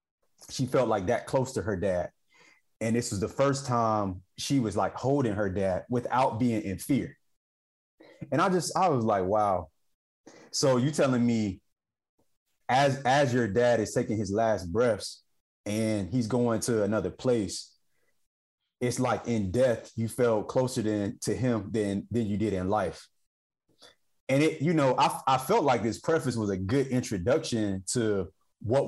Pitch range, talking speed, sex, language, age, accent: 105-135 Hz, 170 wpm, male, English, 30-49, American